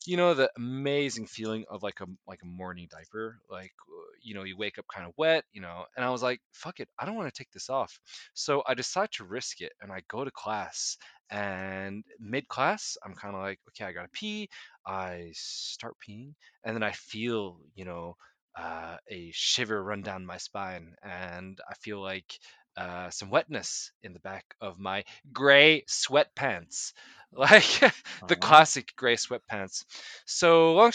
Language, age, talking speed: English, 20-39, 185 wpm